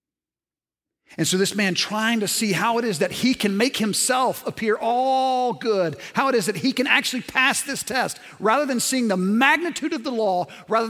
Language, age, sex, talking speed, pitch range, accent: English, 50-69, male, 205 wpm, 190-255 Hz, American